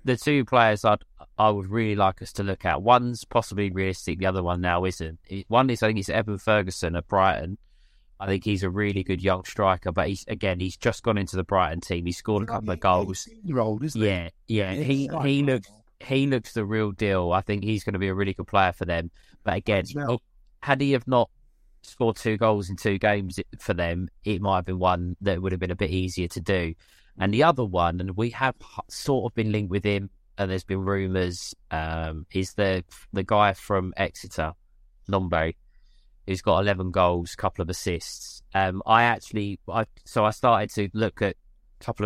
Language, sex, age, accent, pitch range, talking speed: English, male, 20-39, British, 90-110 Hz, 210 wpm